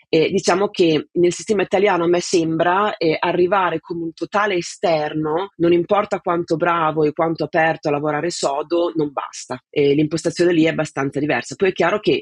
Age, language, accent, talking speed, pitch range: 30-49, Italian, native, 180 wpm, 140-170 Hz